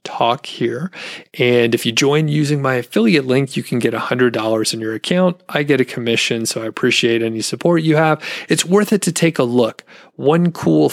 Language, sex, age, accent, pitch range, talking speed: English, male, 30-49, American, 115-135 Hz, 205 wpm